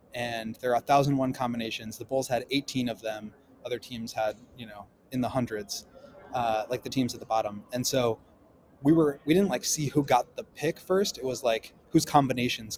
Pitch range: 115-135 Hz